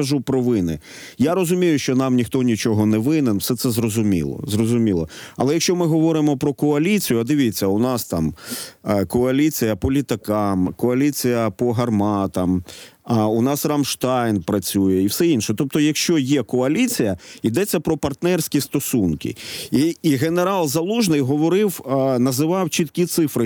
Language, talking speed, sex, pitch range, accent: Ukrainian, 145 wpm, male, 120-160 Hz, native